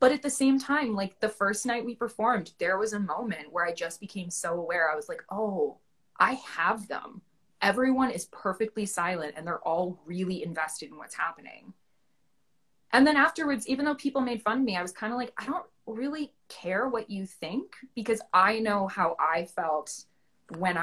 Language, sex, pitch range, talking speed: English, female, 165-235 Hz, 200 wpm